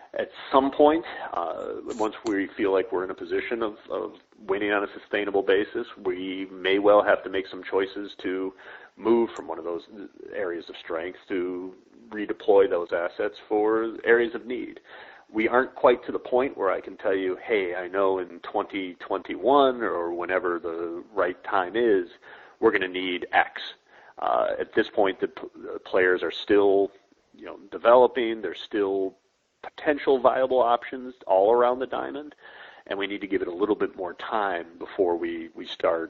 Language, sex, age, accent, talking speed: English, male, 40-59, American, 180 wpm